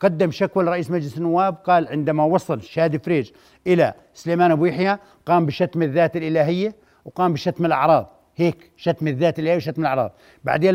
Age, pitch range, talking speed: 60-79, 155-185 Hz, 155 wpm